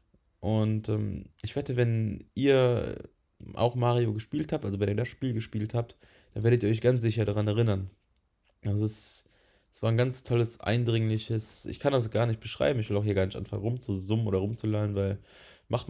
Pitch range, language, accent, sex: 95-110 Hz, German, German, male